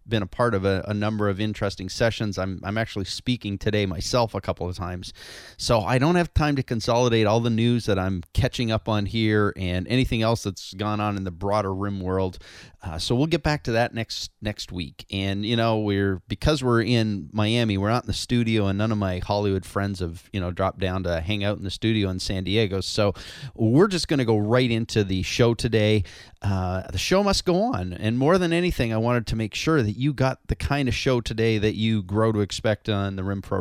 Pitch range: 100-120 Hz